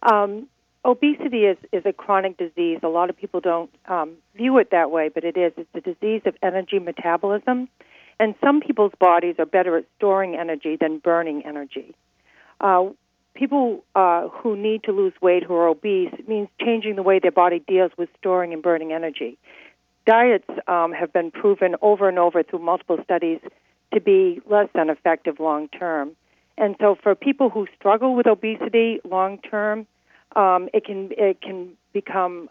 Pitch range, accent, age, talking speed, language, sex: 170-210 Hz, American, 50-69, 175 wpm, English, female